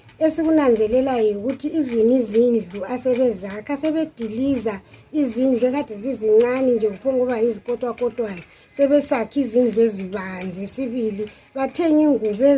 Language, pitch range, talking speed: English, 225-280 Hz, 110 wpm